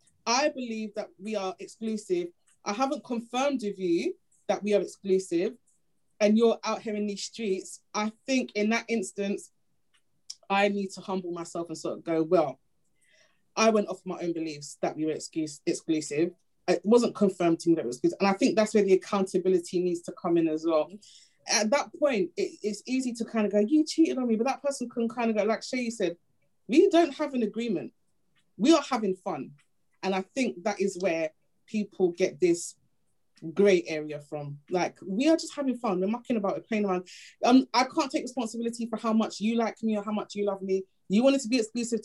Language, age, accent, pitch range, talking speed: English, 20-39, British, 180-230 Hz, 215 wpm